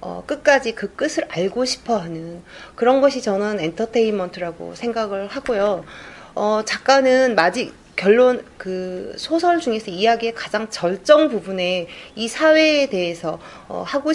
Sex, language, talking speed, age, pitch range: female, French, 125 wpm, 40-59, 190-260 Hz